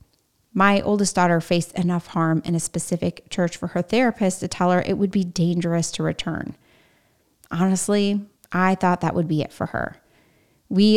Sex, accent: female, American